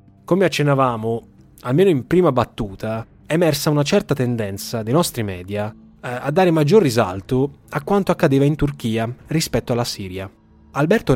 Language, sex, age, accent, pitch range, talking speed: Italian, male, 20-39, native, 115-155 Hz, 145 wpm